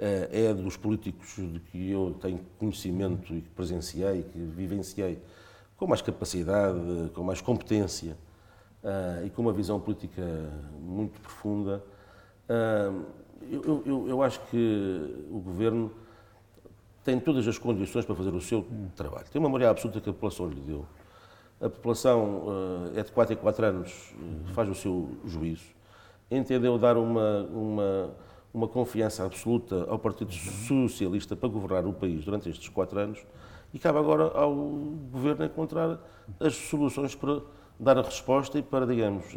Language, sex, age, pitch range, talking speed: Portuguese, male, 50-69, 95-115 Hz, 150 wpm